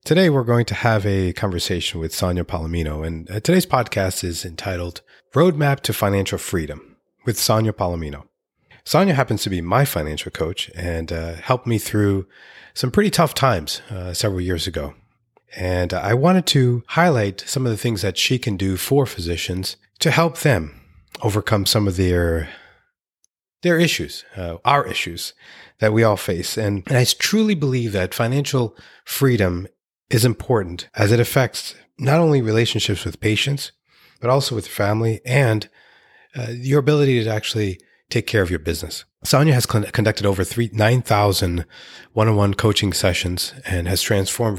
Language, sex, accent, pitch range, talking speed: English, male, American, 90-120 Hz, 155 wpm